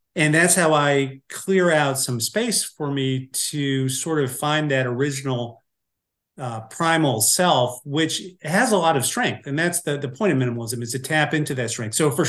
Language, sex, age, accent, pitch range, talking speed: English, male, 40-59, American, 130-165 Hz, 195 wpm